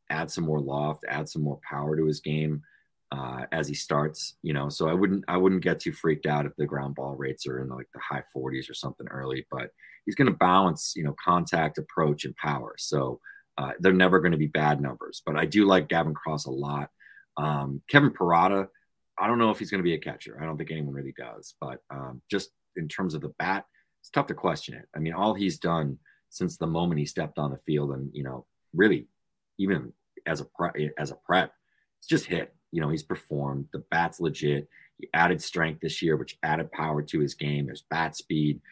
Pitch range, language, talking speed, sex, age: 70-80 Hz, English, 230 wpm, male, 30-49